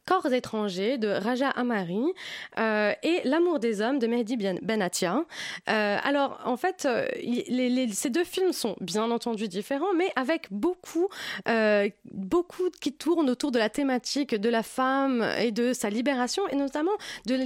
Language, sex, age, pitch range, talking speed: French, female, 20-39, 210-280 Hz, 180 wpm